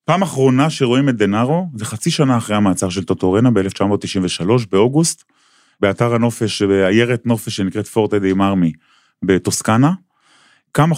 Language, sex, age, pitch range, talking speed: Hebrew, male, 20-39, 105-140 Hz, 135 wpm